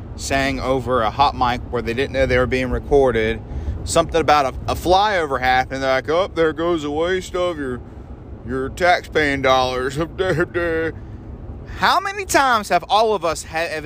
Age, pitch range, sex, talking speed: 30-49, 120-180 Hz, male, 165 wpm